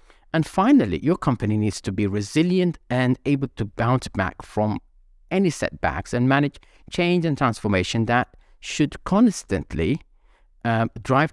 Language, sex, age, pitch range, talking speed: English, male, 50-69, 100-145 Hz, 140 wpm